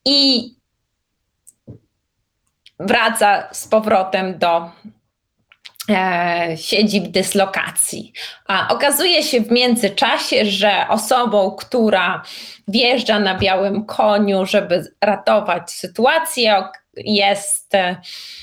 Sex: female